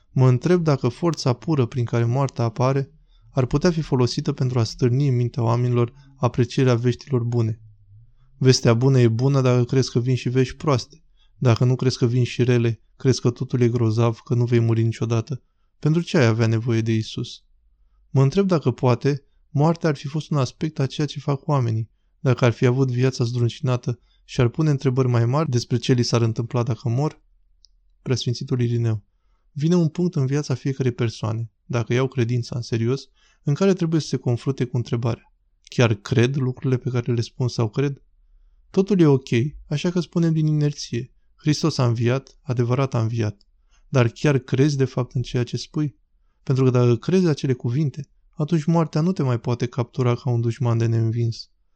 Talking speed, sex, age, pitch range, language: 190 wpm, male, 20-39, 120-140 Hz, Romanian